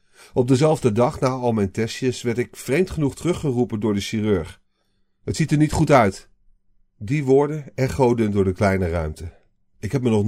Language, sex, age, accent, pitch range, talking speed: Dutch, male, 40-59, Dutch, 100-140 Hz, 185 wpm